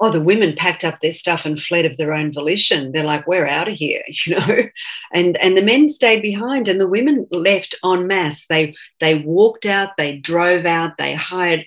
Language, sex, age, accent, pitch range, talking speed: English, female, 40-59, Australian, 155-195 Hz, 215 wpm